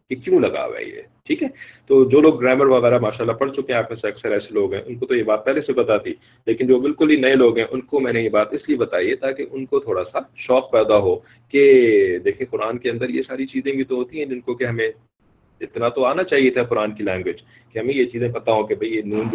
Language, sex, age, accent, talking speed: English, male, 40-59, Indian, 195 wpm